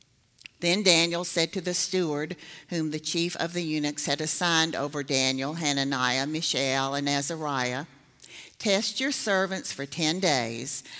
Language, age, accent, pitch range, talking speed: English, 50-69, American, 145-185 Hz, 140 wpm